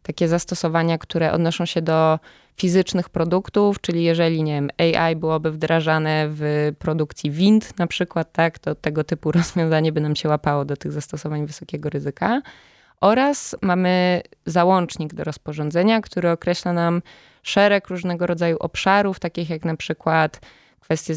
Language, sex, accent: Polish, female, native